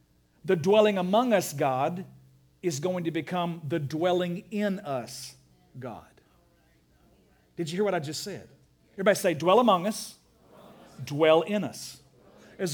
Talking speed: 140 wpm